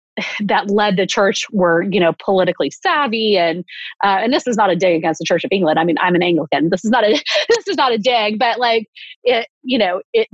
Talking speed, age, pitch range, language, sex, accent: 245 wpm, 30-49, 185-235 Hz, English, female, American